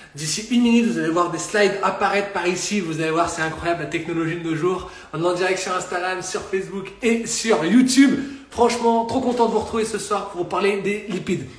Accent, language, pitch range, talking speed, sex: French, French, 165-210 Hz, 235 wpm, male